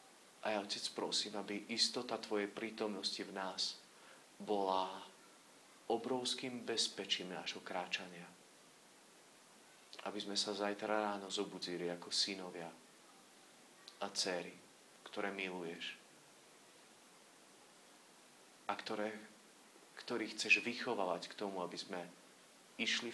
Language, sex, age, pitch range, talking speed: Slovak, male, 40-59, 90-110 Hz, 95 wpm